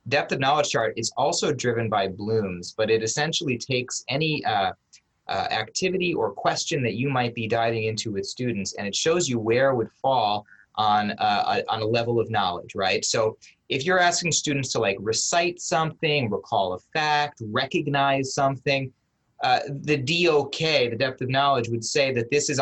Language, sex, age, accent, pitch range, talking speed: English, male, 30-49, American, 115-145 Hz, 180 wpm